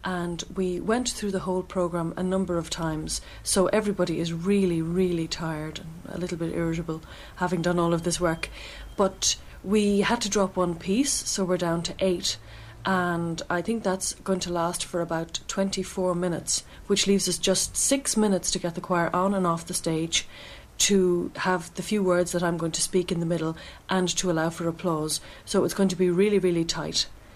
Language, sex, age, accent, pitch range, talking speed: English, female, 30-49, Irish, 165-190 Hz, 200 wpm